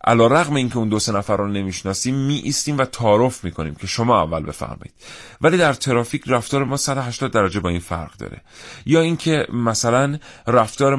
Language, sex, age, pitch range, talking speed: Persian, male, 40-59, 85-115 Hz, 175 wpm